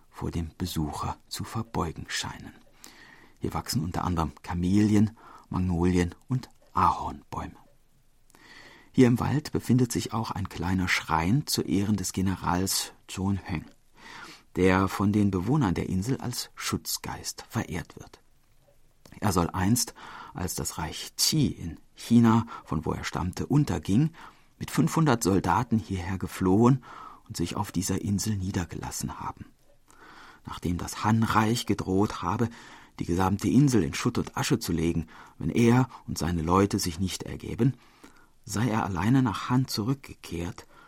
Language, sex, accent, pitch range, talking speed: German, male, German, 90-115 Hz, 135 wpm